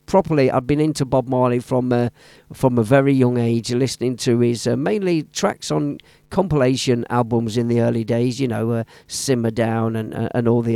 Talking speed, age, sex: 200 wpm, 50-69, male